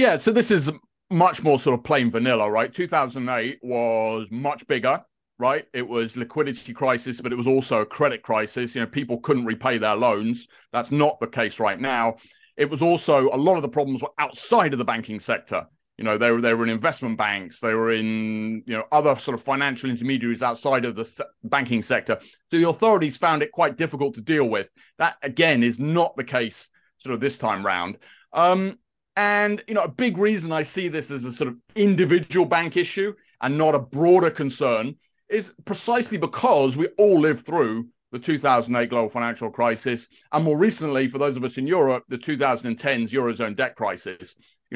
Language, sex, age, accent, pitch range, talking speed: English, male, 30-49, British, 120-165 Hz, 200 wpm